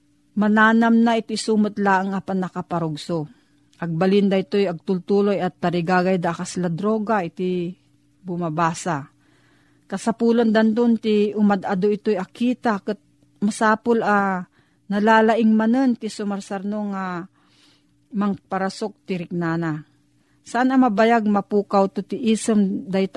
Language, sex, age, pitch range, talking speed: Filipino, female, 40-59, 170-215 Hz, 115 wpm